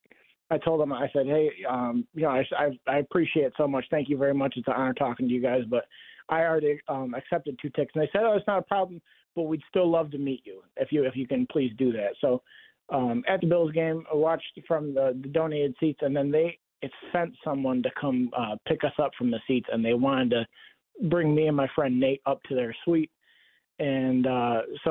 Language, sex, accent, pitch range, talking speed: English, male, American, 130-160 Hz, 245 wpm